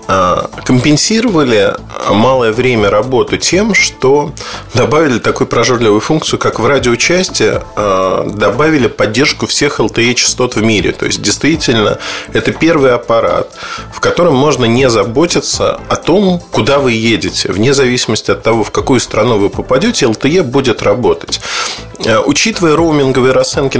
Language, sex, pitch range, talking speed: Russian, male, 115-155 Hz, 125 wpm